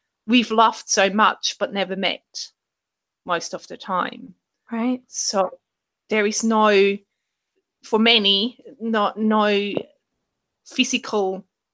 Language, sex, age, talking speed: English, female, 30-49, 105 wpm